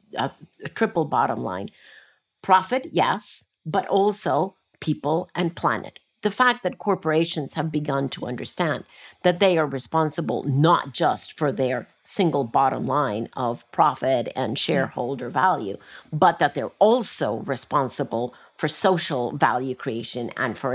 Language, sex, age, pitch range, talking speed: English, female, 50-69, 160-210 Hz, 135 wpm